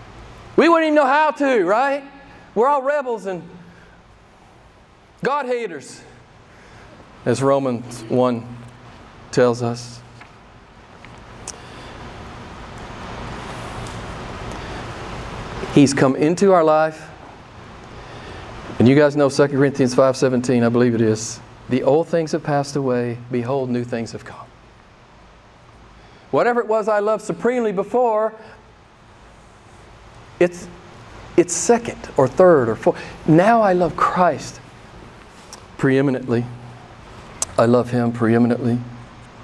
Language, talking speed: English, 105 wpm